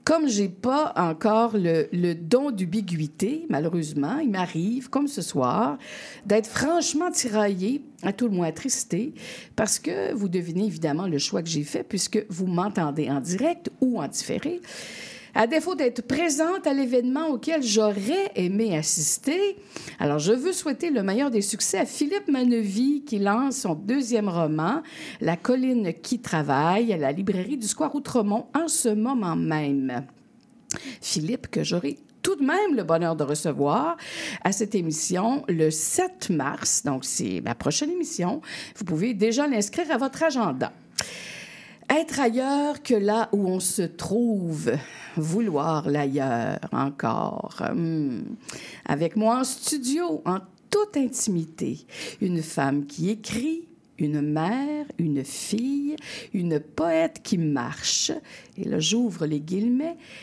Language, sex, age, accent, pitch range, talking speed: French, female, 50-69, Canadian, 170-265 Hz, 145 wpm